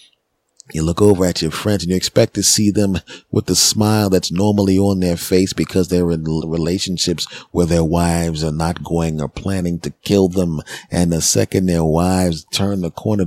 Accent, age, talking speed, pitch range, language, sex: American, 40-59, 195 wpm, 85-105 Hz, English, male